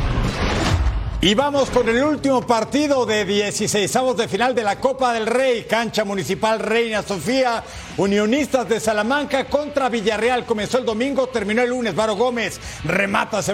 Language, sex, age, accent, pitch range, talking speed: Spanish, male, 50-69, Mexican, 200-245 Hz, 150 wpm